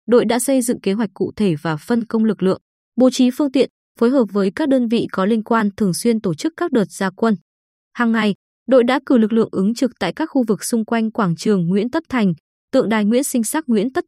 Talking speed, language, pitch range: 260 wpm, Vietnamese, 195-250 Hz